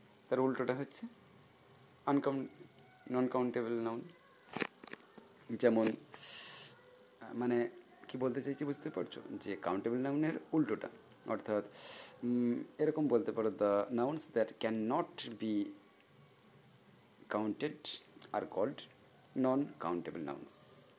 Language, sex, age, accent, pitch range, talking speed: Bengali, male, 30-49, native, 105-135 Hz, 95 wpm